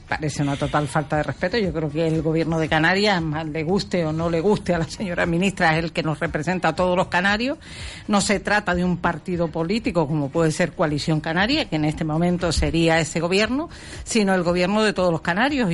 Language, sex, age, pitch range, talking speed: Spanish, female, 50-69, 165-200 Hz, 225 wpm